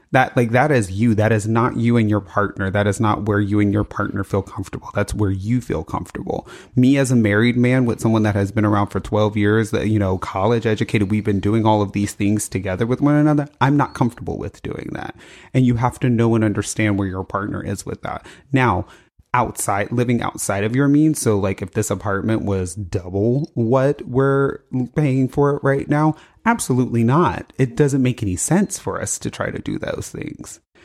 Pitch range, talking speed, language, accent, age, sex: 100-125 Hz, 220 wpm, English, American, 30-49, male